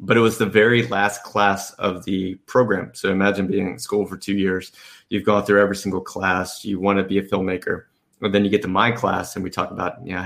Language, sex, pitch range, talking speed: English, male, 95-105 Hz, 240 wpm